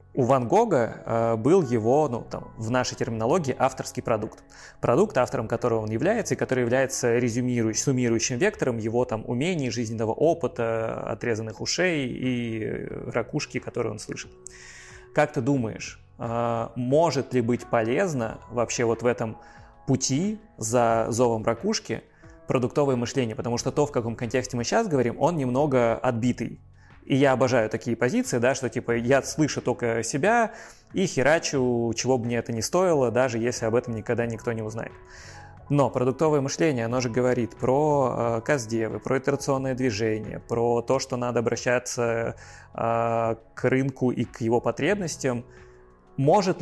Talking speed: 150 wpm